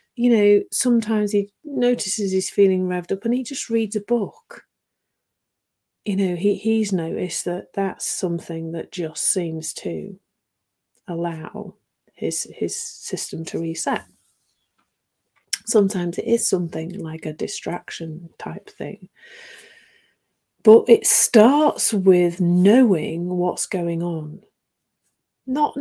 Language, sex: English, female